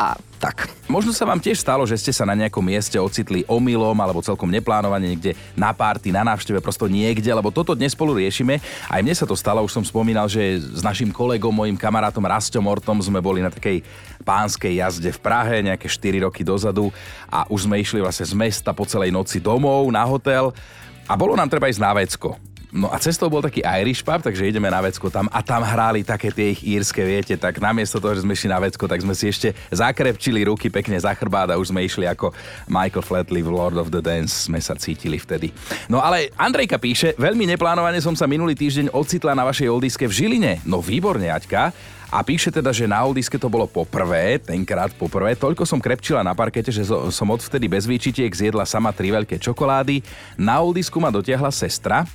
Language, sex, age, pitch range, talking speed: Slovak, male, 30-49, 95-125 Hz, 210 wpm